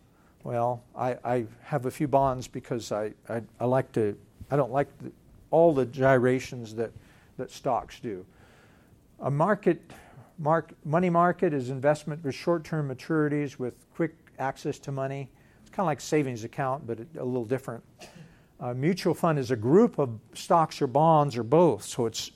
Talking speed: 170 wpm